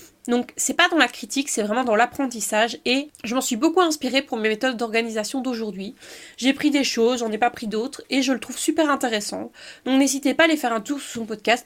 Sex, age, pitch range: female, 20-39, 220-275 Hz